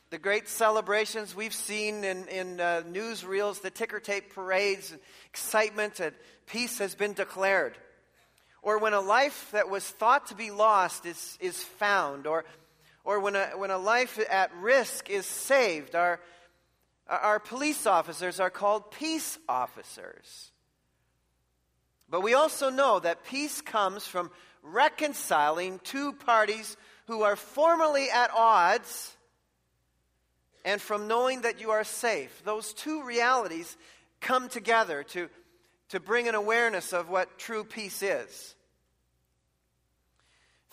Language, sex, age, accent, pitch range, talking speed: English, male, 40-59, American, 170-230 Hz, 135 wpm